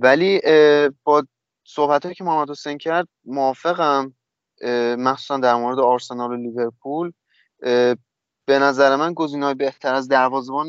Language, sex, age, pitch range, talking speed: Persian, male, 20-39, 120-150 Hz, 120 wpm